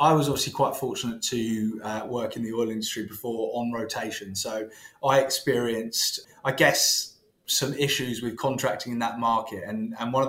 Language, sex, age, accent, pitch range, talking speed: English, male, 20-39, British, 110-130 Hz, 180 wpm